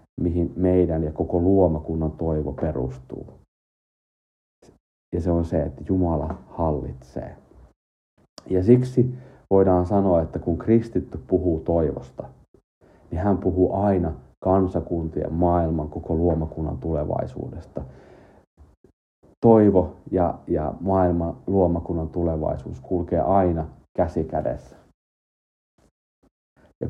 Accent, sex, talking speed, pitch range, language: native, male, 95 wpm, 80-100 Hz, Finnish